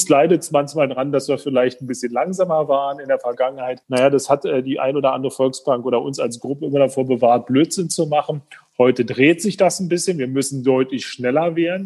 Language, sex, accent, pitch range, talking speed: German, male, German, 130-150 Hz, 215 wpm